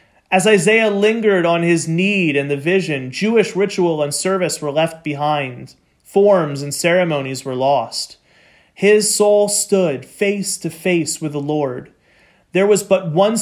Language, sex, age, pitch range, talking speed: English, male, 30-49, 145-190 Hz, 150 wpm